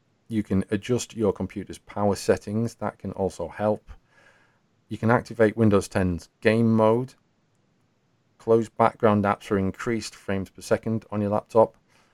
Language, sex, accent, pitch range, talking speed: English, male, British, 95-115 Hz, 145 wpm